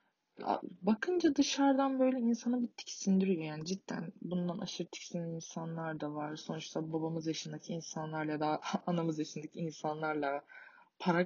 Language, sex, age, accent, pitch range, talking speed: Turkish, female, 20-39, native, 155-210 Hz, 125 wpm